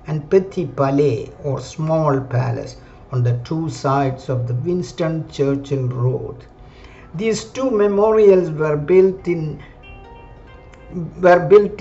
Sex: male